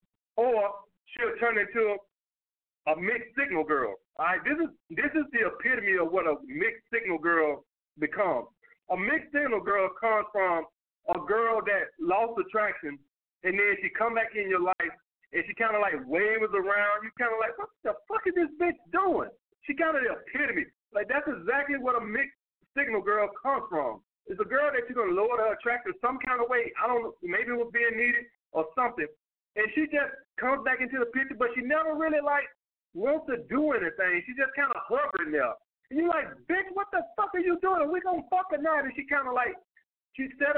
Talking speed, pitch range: 210 wpm, 210-300 Hz